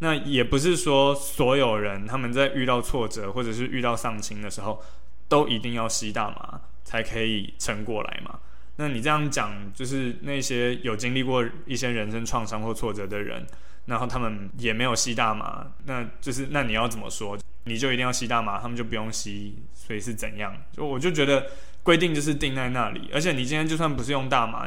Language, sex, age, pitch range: Chinese, male, 20-39, 110-140 Hz